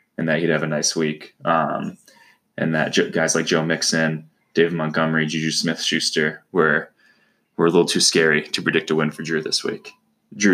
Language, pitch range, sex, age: English, 75-85 Hz, male, 20-39